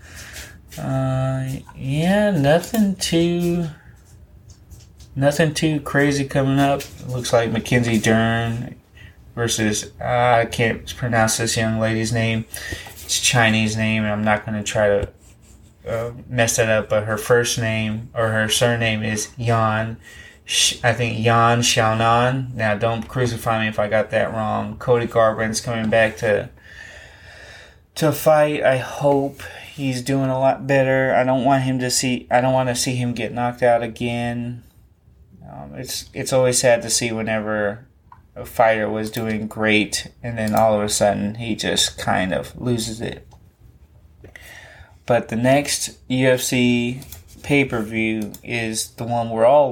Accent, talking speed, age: American, 155 wpm, 20-39